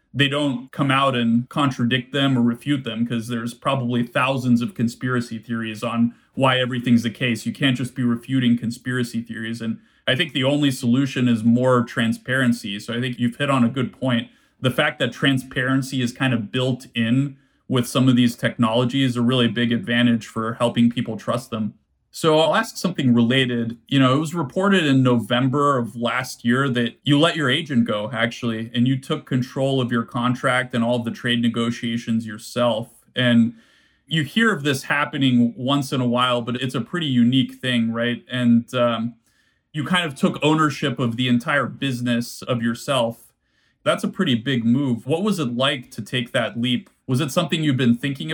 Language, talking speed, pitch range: English, 190 wpm, 120-135 Hz